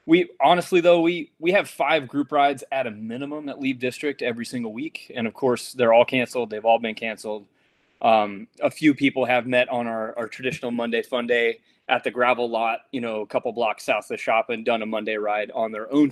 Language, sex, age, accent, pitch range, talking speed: English, male, 20-39, American, 120-155 Hz, 230 wpm